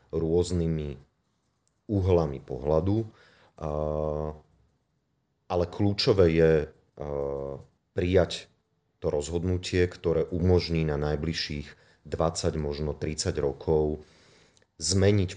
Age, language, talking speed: 30-49, Slovak, 70 wpm